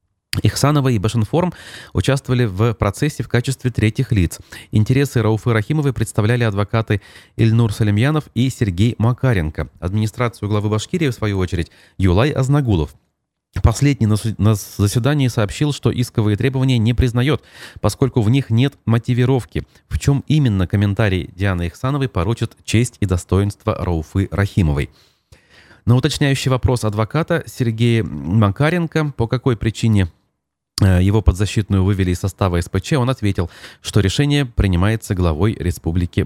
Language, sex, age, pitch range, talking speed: Russian, male, 30-49, 95-125 Hz, 130 wpm